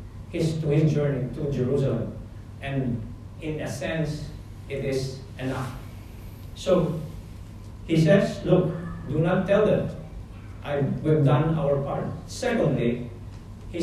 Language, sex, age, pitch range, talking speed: English, male, 50-69, 110-170 Hz, 115 wpm